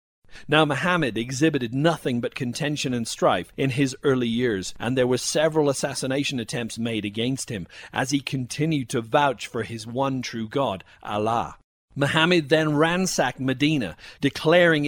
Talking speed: 150 wpm